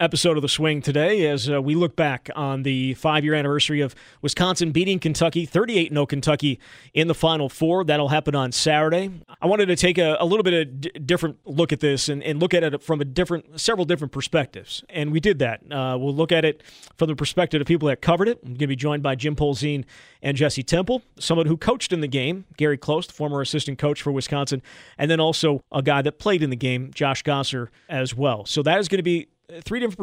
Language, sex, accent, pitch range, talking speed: English, male, American, 135-160 Hz, 230 wpm